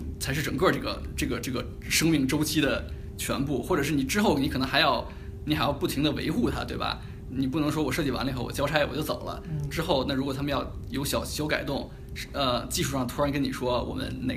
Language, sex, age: Chinese, male, 20-39